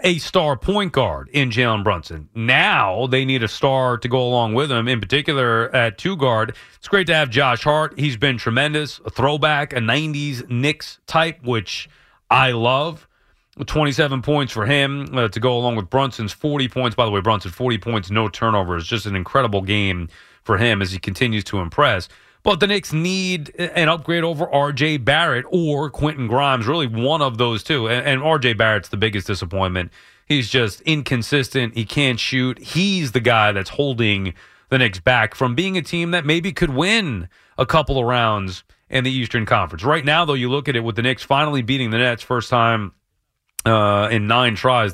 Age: 30-49